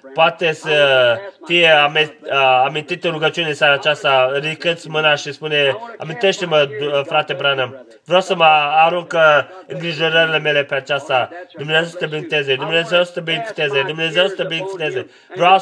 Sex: male